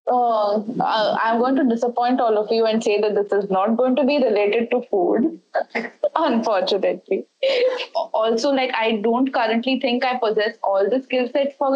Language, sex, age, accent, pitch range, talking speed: English, female, 20-39, Indian, 210-260 Hz, 175 wpm